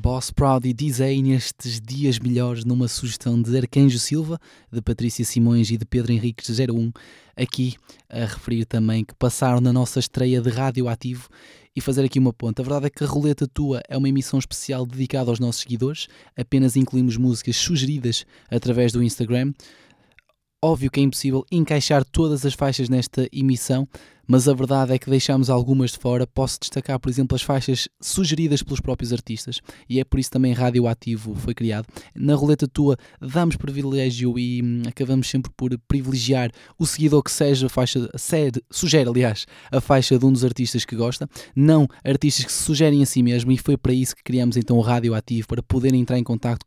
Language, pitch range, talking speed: Portuguese, 120-135 Hz, 190 wpm